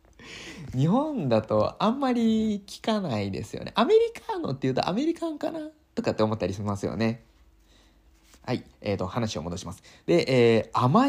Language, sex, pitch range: Japanese, male, 95-155 Hz